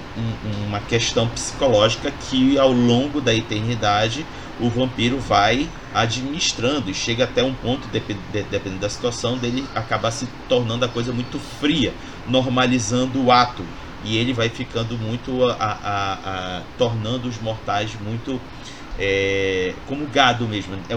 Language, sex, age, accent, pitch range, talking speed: Portuguese, male, 30-49, Brazilian, 105-135 Hz, 140 wpm